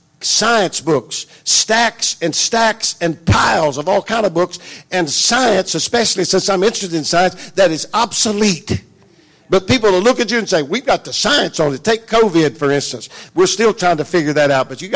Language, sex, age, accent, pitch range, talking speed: English, male, 50-69, American, 150-200 Hz, 200 wpm